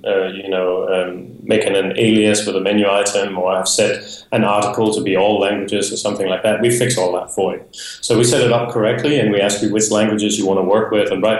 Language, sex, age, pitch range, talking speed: English, male, 30-49, 105-125 Hz, 260 wpm